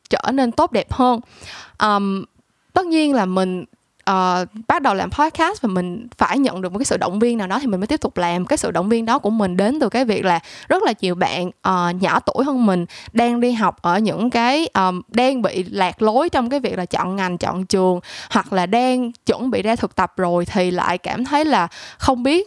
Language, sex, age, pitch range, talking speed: Vietnamese, female, 10-29, 190-255 Hz, 235 wpm